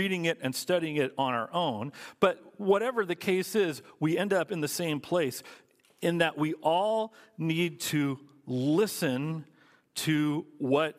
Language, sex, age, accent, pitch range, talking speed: English, male, 40-59, American, 140-190 Hz, 160 wpm